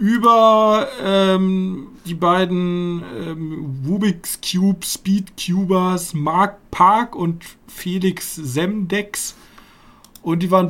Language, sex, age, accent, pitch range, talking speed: German, male, 40-59, German, 165-210 Hz, 95 wpm